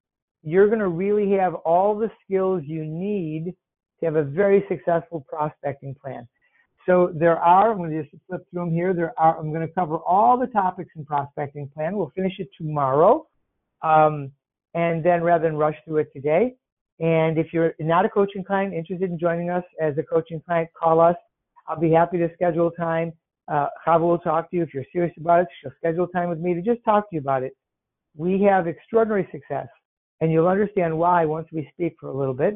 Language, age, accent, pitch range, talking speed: English, 60-79, American, 155-185 Hz, 210 wpm